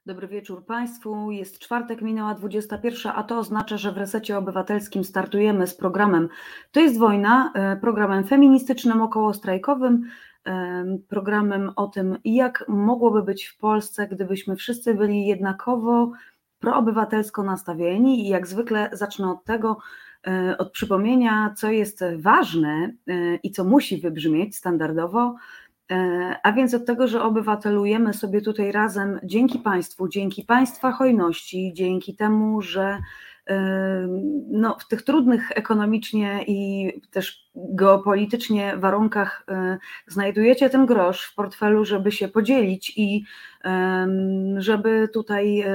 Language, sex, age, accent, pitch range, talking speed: Polish, female, 30-49, native, 190-225 Hz, 115 wpm